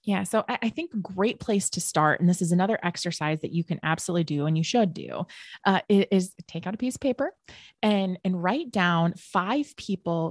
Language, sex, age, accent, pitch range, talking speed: English, female, 20-39, American, 170-230 Hz, 215 wpm